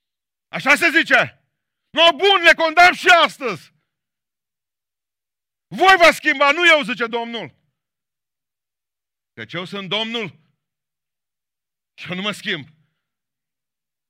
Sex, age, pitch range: male, 50-69, 130-205 Hz